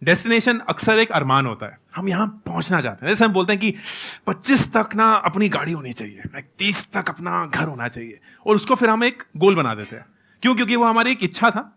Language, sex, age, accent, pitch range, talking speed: Hindi, male, 30-49, native, 145-225 Hz, 230 wpm